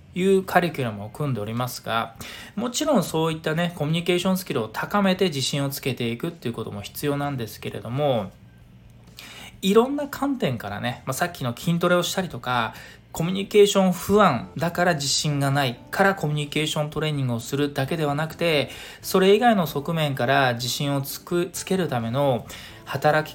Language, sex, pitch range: Japanese, male, 120-175 Hz